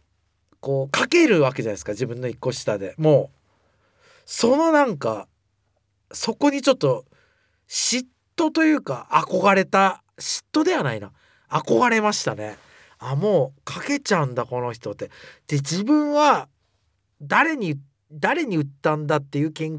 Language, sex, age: Japanese, male, 40-59